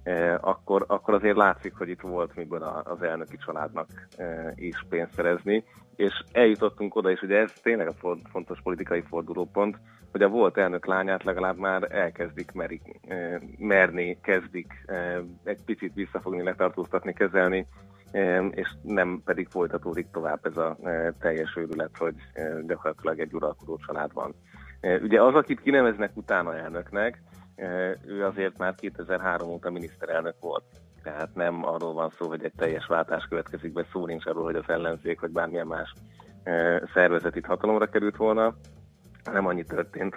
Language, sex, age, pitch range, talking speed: Hungarian, male, 30-49, 85-95 Hz, 150 wpm